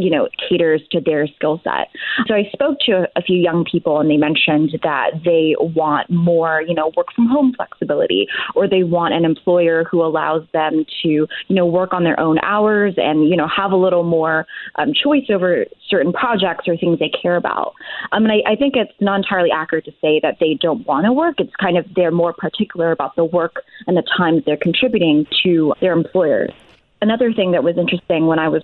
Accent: American